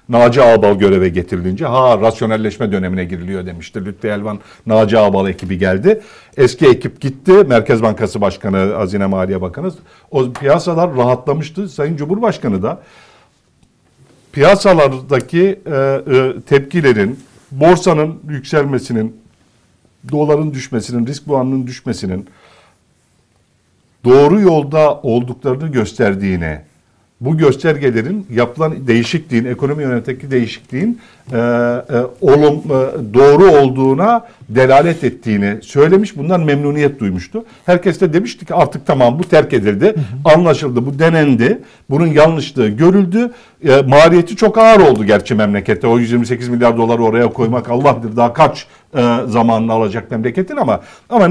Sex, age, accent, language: male, 60-79, native, Turkish